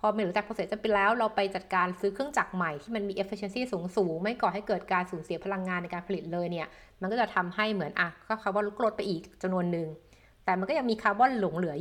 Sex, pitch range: female, 180-215 Hz